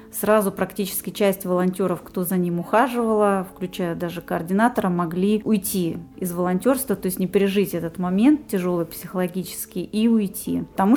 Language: Russian